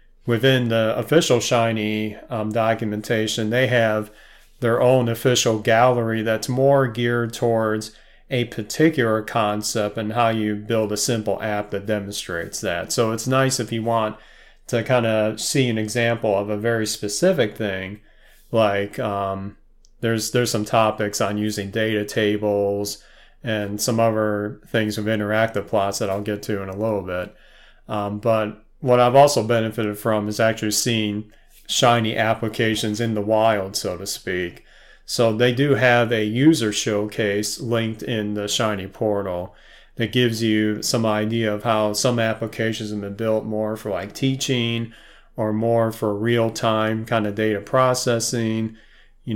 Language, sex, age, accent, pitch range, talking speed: English, male, 30-49, American, 105-115 Hz, 155 wpm